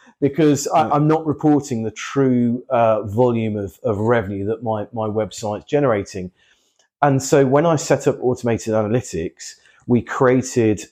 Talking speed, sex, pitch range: 150 wpm, male, 100-120 Hz